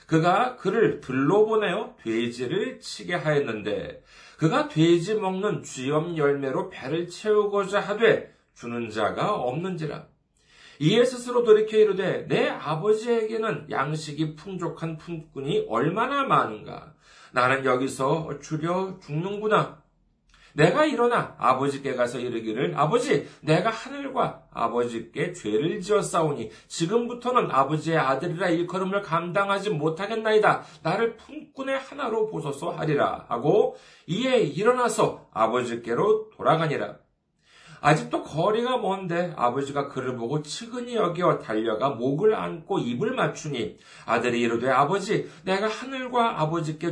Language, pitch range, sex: Korean, 140-220 Hz, male